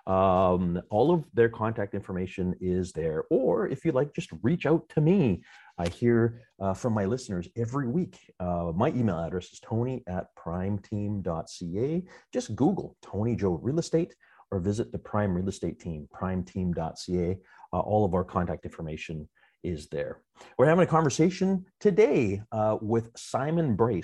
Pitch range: 95-125 Hz